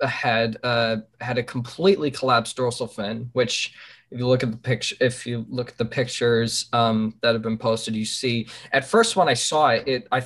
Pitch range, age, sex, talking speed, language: 115-125 Hz, 20-39, male, 205 wpm, English